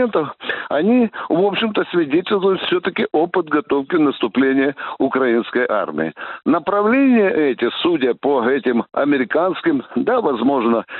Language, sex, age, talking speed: Russian, male, 60-79, 100 wpm